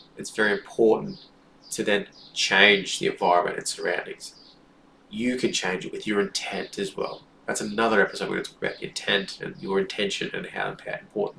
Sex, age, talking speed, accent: male, 20-39, 185 wpm, Australian